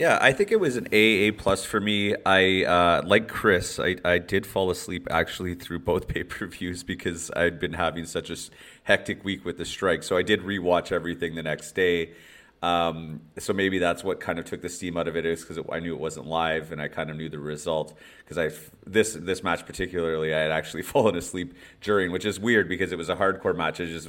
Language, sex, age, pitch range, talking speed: English, male, 30-49, 80-90 Hz, 225 wpm